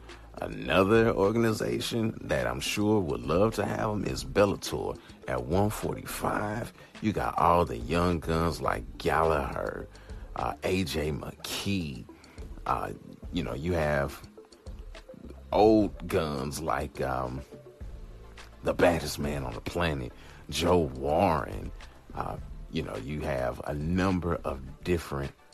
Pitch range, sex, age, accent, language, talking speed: 75-105 Hz, male, 40-59, American, English, 120 wpm